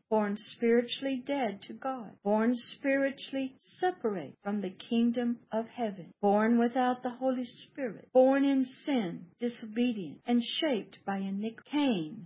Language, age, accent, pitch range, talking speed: English, 50-69, American, 205-245 Hz, 135 wpm